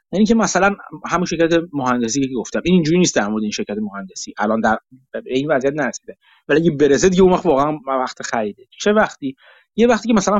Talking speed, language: 190 wpm, Persian